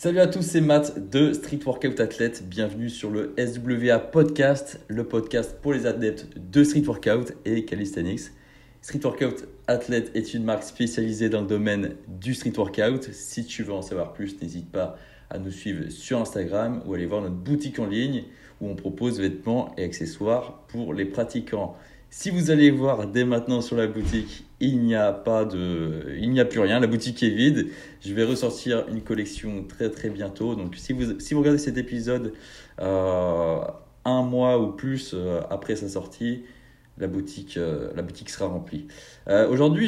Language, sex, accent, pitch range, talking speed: French, male, French, 100-130 Hz, 185 wpm